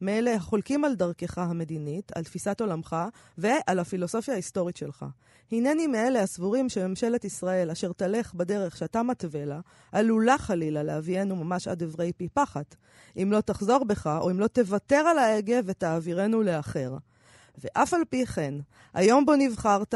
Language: Hebrew